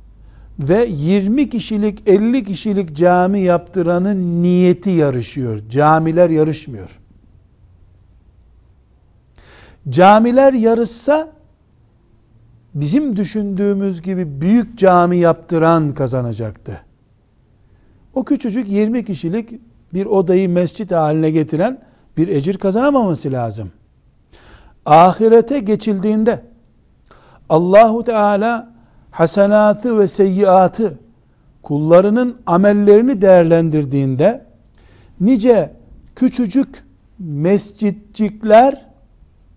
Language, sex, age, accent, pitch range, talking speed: Turkish, male, 60-79, native, 140-215 Hz, 70 wpm